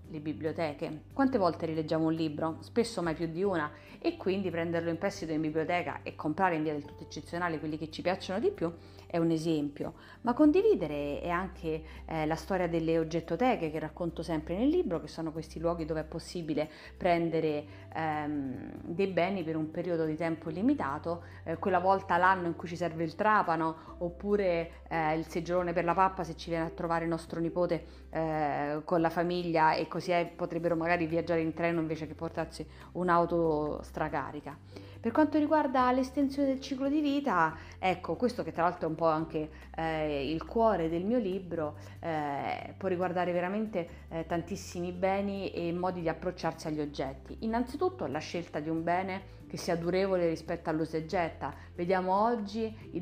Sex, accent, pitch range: female, native, 160-190 Hz